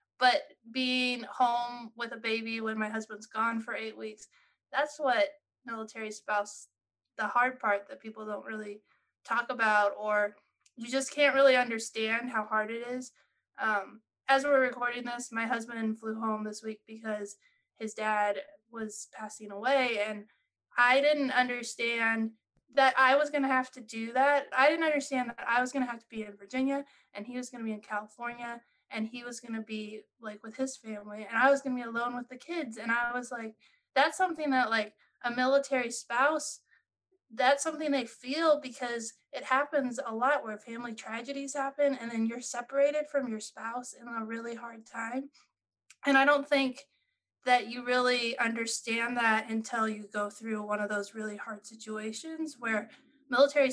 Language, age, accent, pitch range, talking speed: English, 20-39, American, 220-265 Hz, 185 wpm